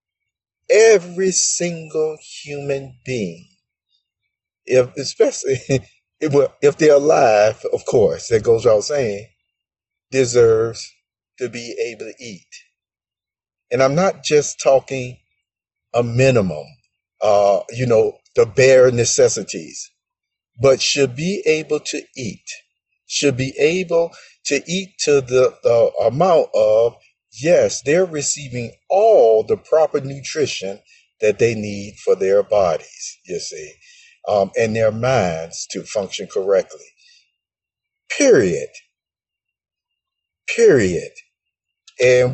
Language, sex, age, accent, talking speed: English, male, 50-69, American, 105 wpm